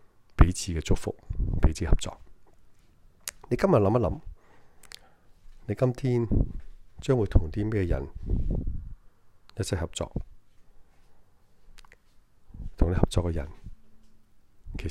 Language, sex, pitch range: Chinese, male, 85-105 Hz